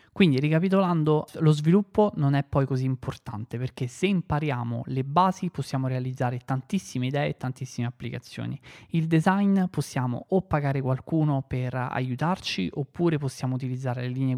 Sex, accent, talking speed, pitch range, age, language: male, native, 140 wpm, 125-150 Hz, 20-39, Italian